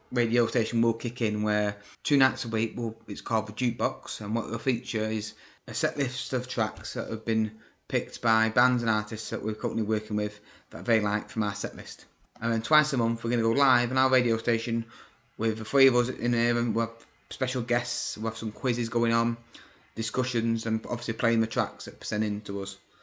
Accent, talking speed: British, 225 wpm